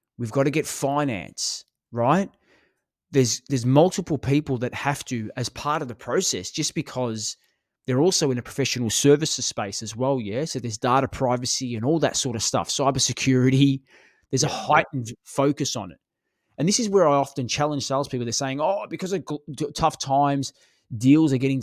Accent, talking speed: Australian, 185 wpm